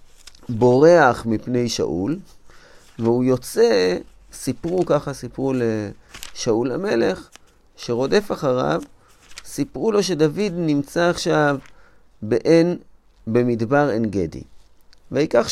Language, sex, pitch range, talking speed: Hebrew, male, 115-175 Hz, 85 wpm